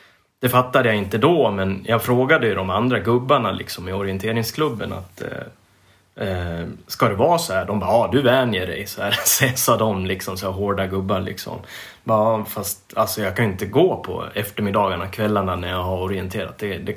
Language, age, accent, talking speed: English, 30-49, Swedish, 200 wpm